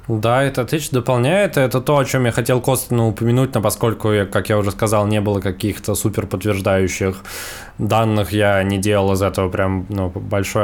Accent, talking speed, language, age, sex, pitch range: native, 175 wpm, Russian, 20-39, male, 100-120 Hz